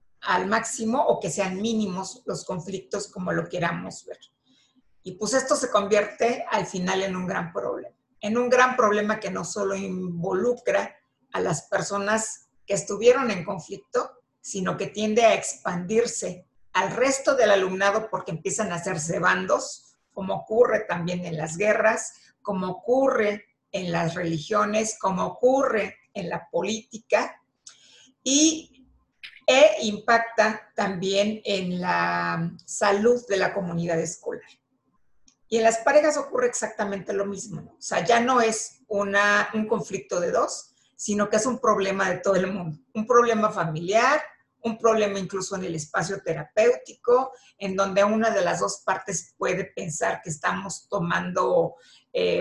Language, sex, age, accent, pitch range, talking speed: Spanish, female, 50-69, Mexican, 185-230 Hz, 150 wpm